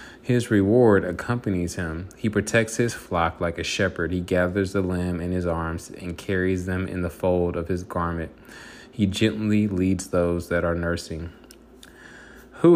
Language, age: English, 20-39